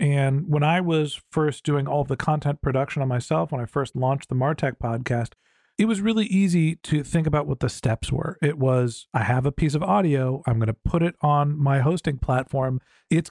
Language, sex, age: English, male, 40-59